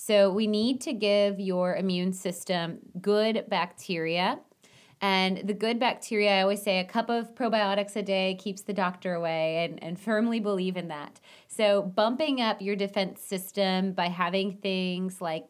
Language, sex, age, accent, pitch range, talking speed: English, female, 20-39, American, 175-210 Hz, 165 wpm